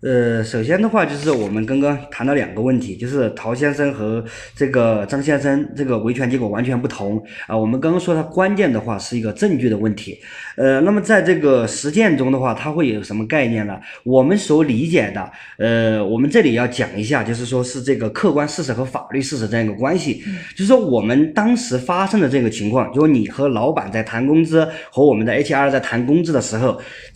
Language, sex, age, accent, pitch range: Chinese, male, 20-39, native, 110-155 Hz